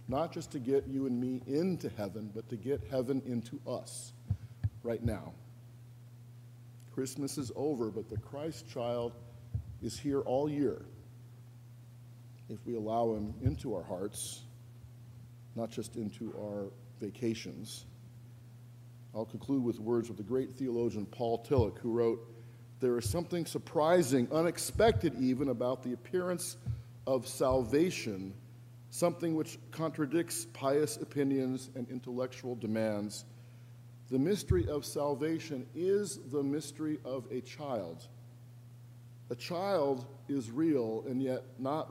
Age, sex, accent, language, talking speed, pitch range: 50-69, male, American, English, 125 wpm, 120-140 Hz